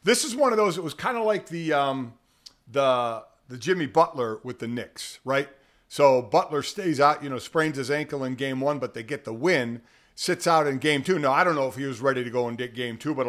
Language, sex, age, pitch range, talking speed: English, male, 50-69, 135-180 Hz, 260 wpm